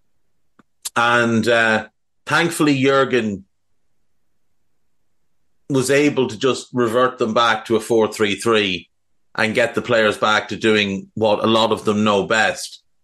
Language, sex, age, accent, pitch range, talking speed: English, male, 30-49, Irish, 105-130 Hz, 130 wpm